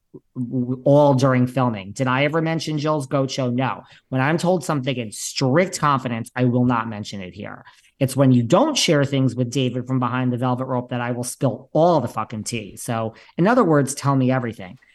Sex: male